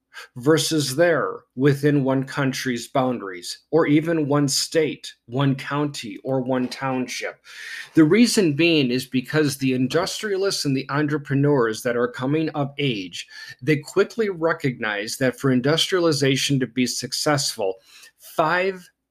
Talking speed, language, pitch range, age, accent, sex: 125 wpm, English, 130-155 Hz, 40-59, American, male